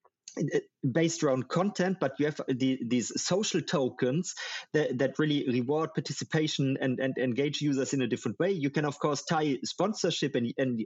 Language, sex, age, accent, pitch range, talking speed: English, male, 30-49, German, 135-175 Hz, 175 wpm